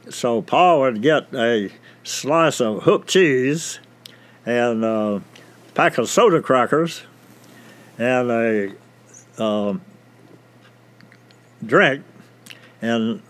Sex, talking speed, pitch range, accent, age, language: male, 90 wpm, 115-150 Hz, American, 60-79, English